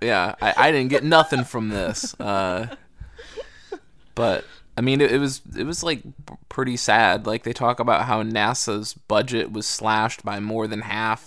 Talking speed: 175 wpm